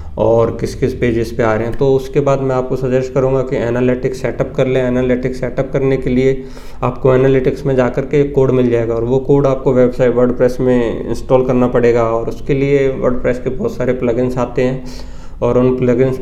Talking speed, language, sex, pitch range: 210 wpm, Hindi, male, 120-140 Hz